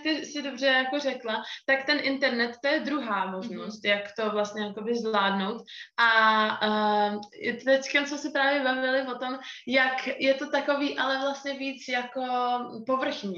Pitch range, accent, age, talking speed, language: 225-270 Hz, native, 20-39, 150 wpm, Czech